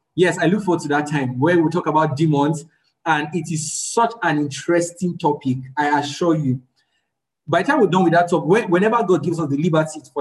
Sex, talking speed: male, 215 wpm